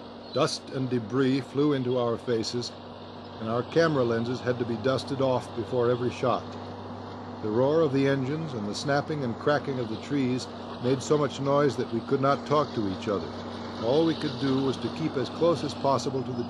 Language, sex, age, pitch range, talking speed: English, male, 60-79, 115-140 Hz, 205 wpm